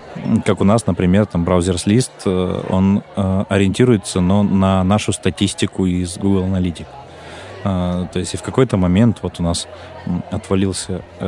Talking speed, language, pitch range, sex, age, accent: 135 wpm, Russian, 90-100 Hz, male, 20-39, native